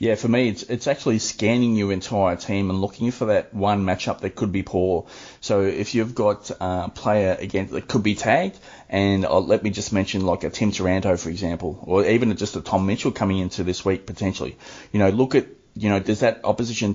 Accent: Australian